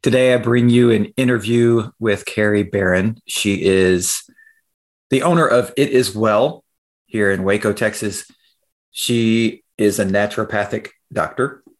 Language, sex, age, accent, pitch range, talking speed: English, male, 40-59, American, 105-125 Hz, 130 wpm